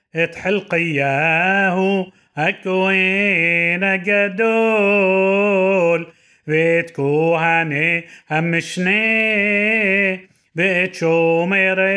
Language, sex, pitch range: Hebrew, male, 165-195 Hz